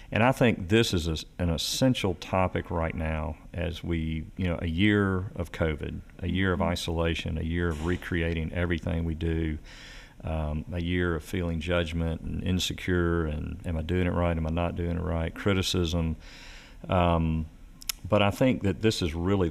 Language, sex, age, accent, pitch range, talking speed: English, male, 40-59, American, 80-95 Hz, 180 wpm